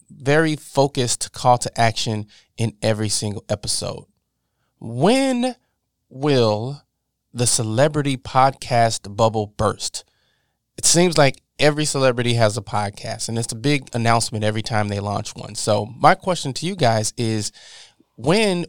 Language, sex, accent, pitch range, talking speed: English, male, American, 115-135 Hz, 135 wpm